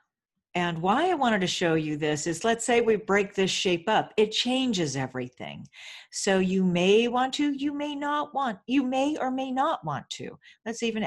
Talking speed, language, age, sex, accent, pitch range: 200 wpm, English, 50-69, female, American, 165-225 Hz